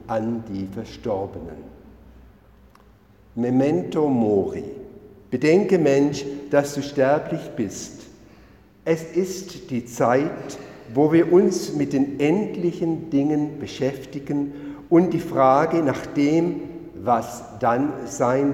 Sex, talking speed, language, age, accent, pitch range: male, 95 wpm, German, 50-69, German, 115-150 Hz